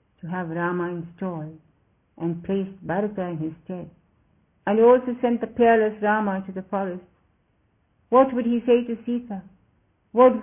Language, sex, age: English, female, 50-69